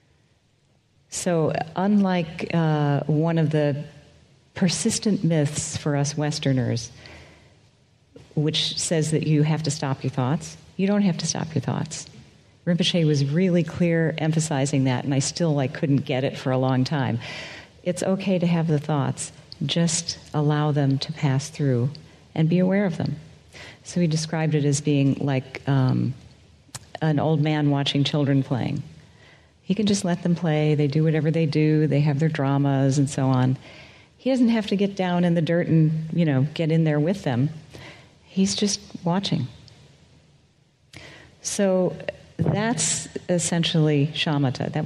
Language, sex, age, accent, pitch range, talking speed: English, female, 40-59, American, 140-170 Hz, 160 wpm